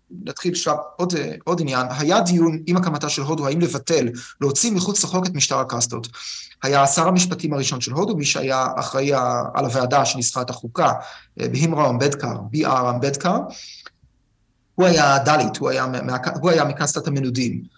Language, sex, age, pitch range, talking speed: Hebrew, male, 30-49, 135-175 Hz, 150 wpm